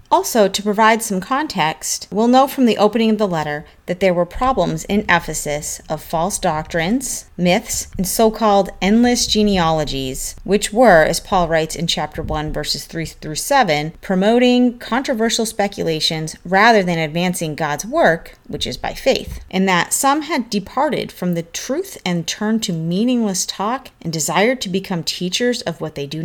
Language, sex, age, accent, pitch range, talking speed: English, female, 30-49, American, 165-220 Hz, 165 wpm